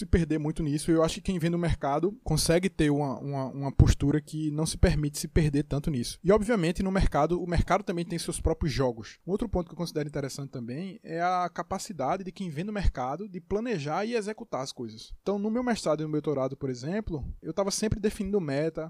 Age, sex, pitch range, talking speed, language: 20-39, male, 145-185 Hz, 235 wpm, Portuguese